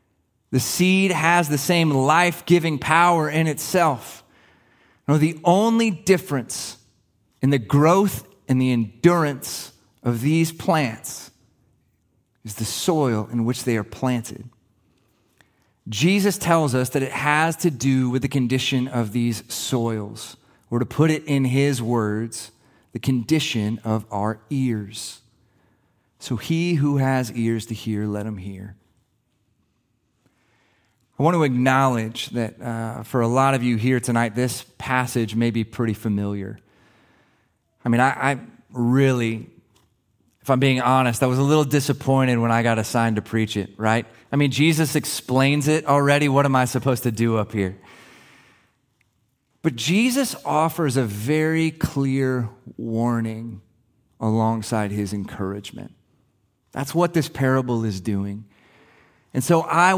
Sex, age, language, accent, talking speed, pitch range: male, 30-49, English, American, 140 wpm, 110-145 Hz